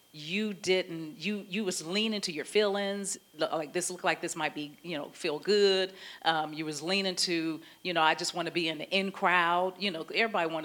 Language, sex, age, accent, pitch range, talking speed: English, female, 40-59, American, 160-210 Hz, 225 wpm